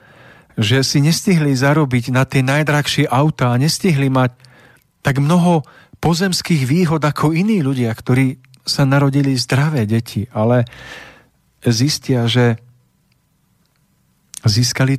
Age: 50-69